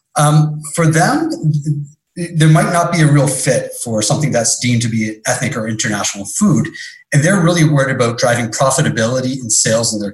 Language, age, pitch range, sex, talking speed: English, 30-49, 115-155 Hz, male, 185 wpm